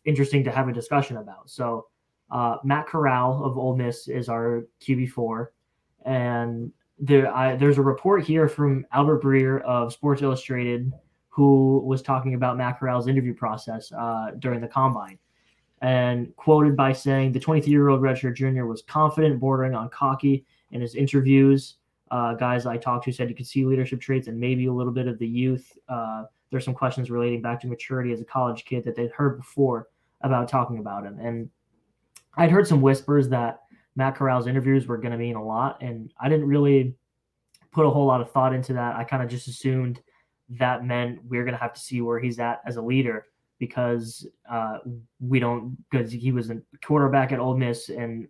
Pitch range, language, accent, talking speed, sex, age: 120-135 Hz, English, American, 200 wpm, male, 10-29